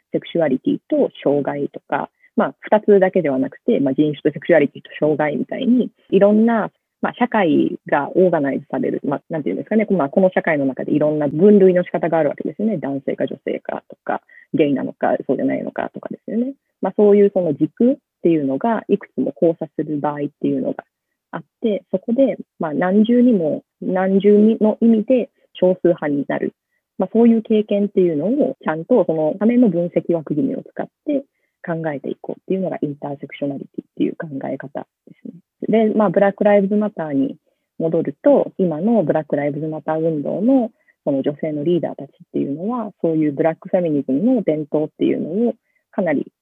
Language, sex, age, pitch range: Japanese, female, 30-49, 155-225 Hz